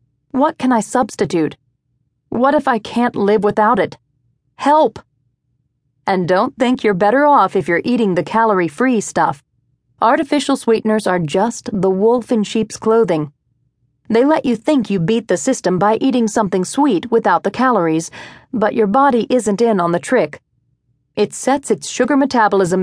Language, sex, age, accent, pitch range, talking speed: English, female, 40-59, American, 170-240 Hz, 160 wpm